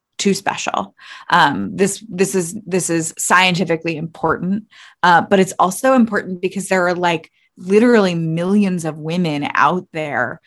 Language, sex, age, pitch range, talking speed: English, female, 20-39, 165-205 Hz, 145 wpm